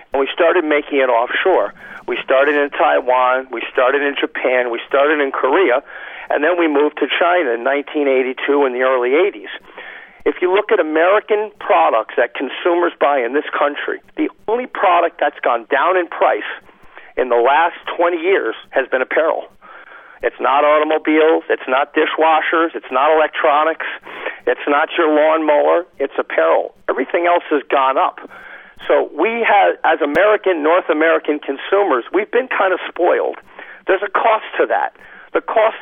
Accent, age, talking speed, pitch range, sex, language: American, 50-69, 165 wpm, 135-175 Hz, male, English